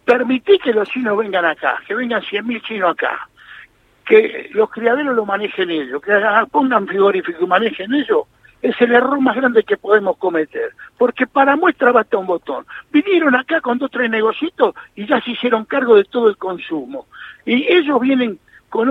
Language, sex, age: Spanish, male, 60-79